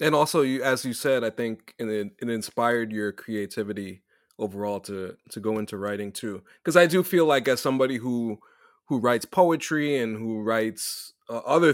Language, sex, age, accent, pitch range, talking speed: English, male, 20-39, American, 110-140 Hz, 185 wpm